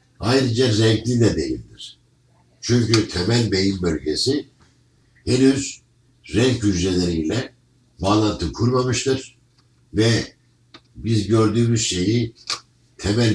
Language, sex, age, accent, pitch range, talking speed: Turkish, male, 60-79, native, 100-125 Hz, 80 wpm